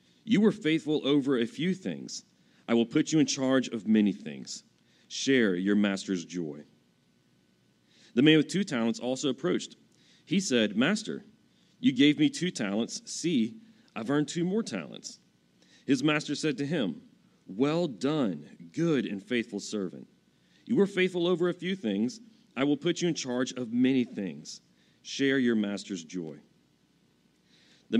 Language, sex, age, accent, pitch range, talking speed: English, male, 40-59, American, 115-180 Hz, 155 wpm